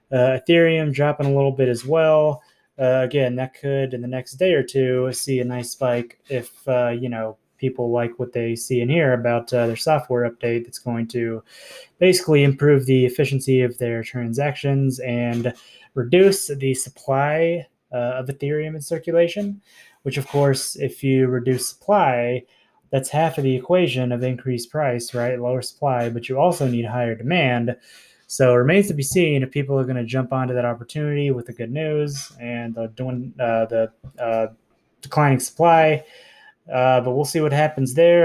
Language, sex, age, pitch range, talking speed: English, male, 20-39, 125-150 Hz, 175 wpm